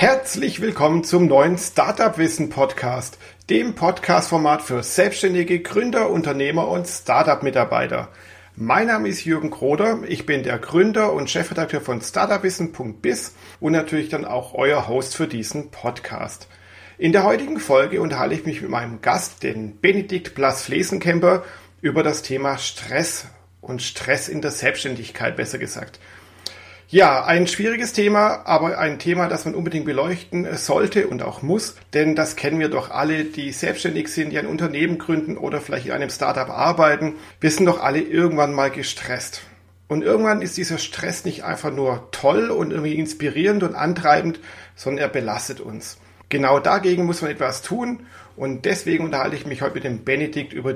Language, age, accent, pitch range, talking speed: German, 40-59, German, 120-170 Hz, 160 wpm